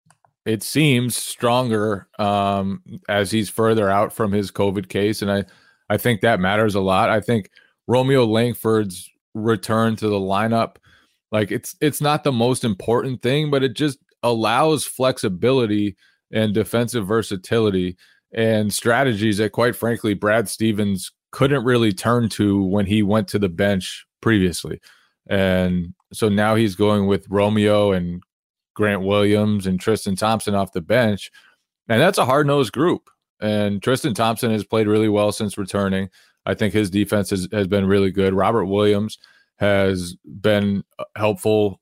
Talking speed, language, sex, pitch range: 150 wpm, English, male, 100-110 Hz